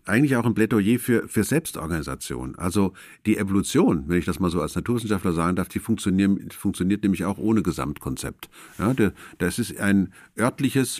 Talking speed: 165 wpm